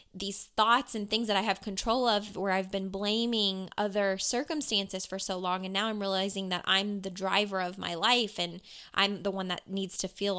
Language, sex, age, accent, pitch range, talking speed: English, female, 20-39, American, 185-215 Hz, 215 wpm